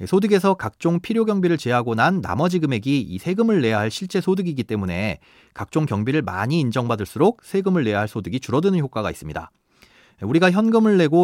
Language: Korean